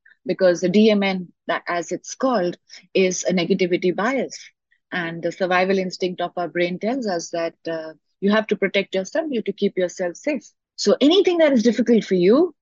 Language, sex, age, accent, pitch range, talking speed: English, female, 30-49, Indian, 180-225 Hz, 185 wpm